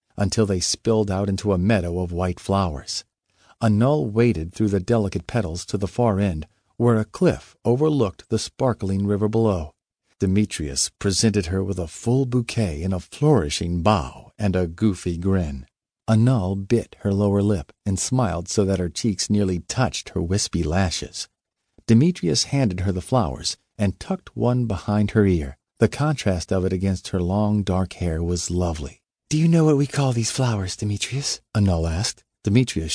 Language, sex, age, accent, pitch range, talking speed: English, male, 50-69, American, 90-115 Hz, 170 wpm